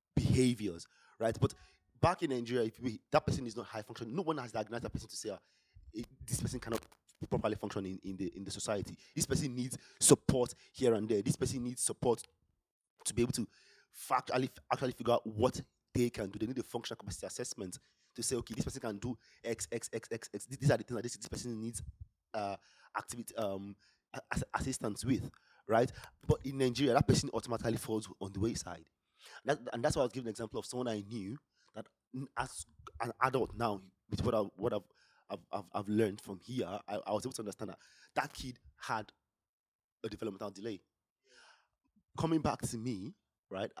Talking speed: 200 wpm